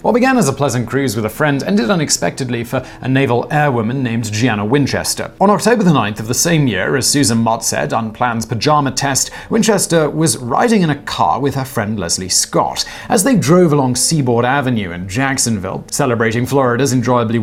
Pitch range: 120-160 Hz